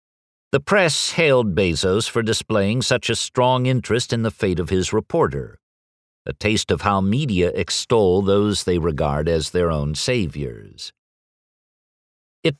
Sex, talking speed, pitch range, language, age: male, 145 wpm, 85-110 Hz, English, 50-69